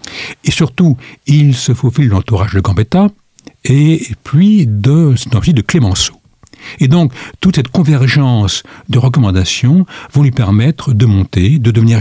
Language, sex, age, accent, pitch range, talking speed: French, male, 60-79, French, 105-145 Hz, 140 wpm